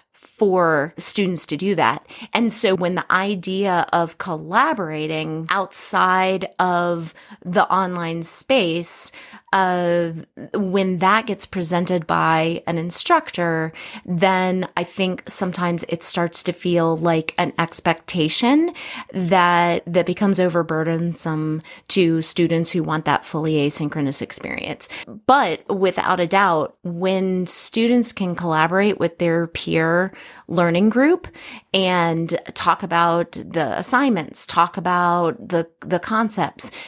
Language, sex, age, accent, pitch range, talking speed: English, female, 30-49, American, 165-195 Hz, 115 wpm